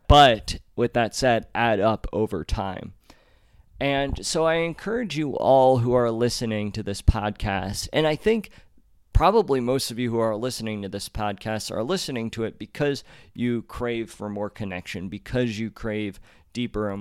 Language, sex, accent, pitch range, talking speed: English, male, American, 105-125 Hz, 170 wpm